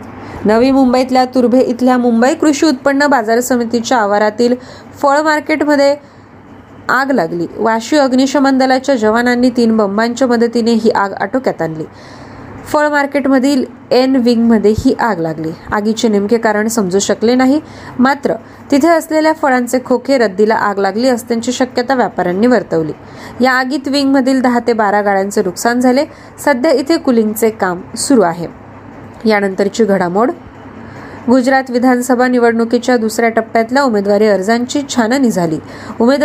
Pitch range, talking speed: 225-275 Hz, 75 wpm